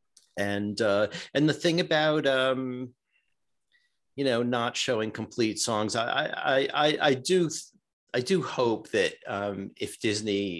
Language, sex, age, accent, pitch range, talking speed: English, male, 50-69, American, 95-130 Hz, 140 wpm